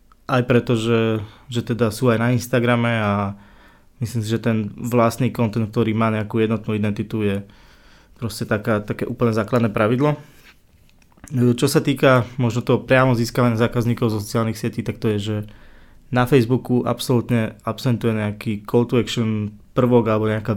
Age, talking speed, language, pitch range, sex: 20-39, 155 wpm, Slovak, 105-120 Hz, male